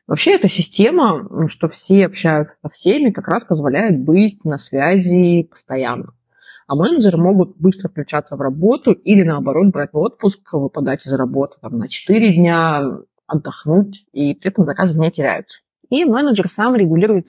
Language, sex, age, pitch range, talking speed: Russian, female, 20-39, 150-195 Hz, 155 wpm